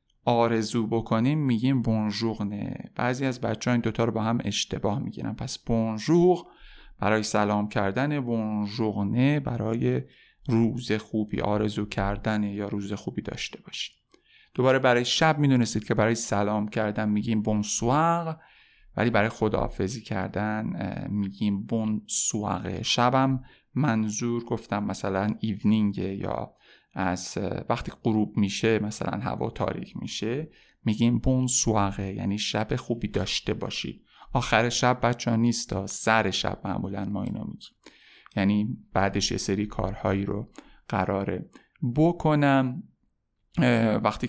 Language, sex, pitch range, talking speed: Persian, male, 105-125 Hz, 125 wpm